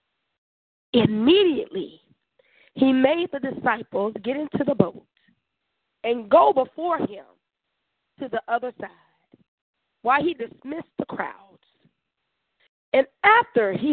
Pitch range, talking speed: 240-340 Hz, 110 wpm